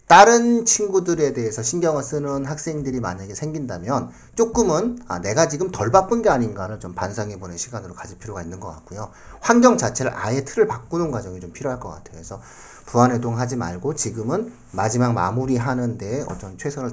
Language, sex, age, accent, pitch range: Korean, male, 40-59, native, 100-150 Hz